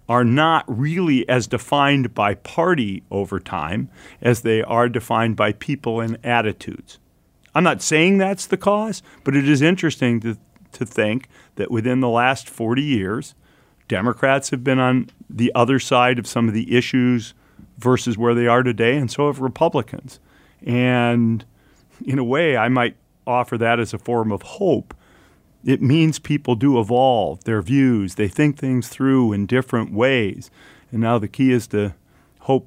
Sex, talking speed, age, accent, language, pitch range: male, 165 wpm, 40-59, American, English, 110-130 Hz